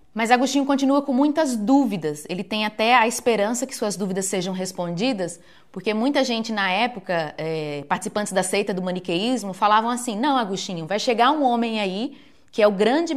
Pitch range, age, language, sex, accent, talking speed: 195-245 Hz, 20-39, Portuguese, female, Brazilian, 180 wpm